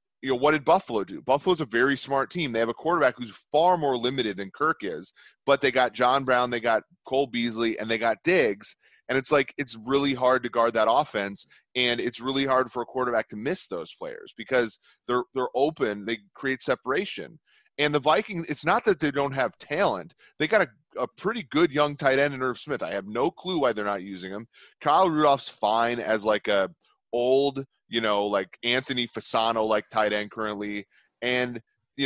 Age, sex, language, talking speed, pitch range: 30-49, male, English, 210 wpm, 115-145 Hz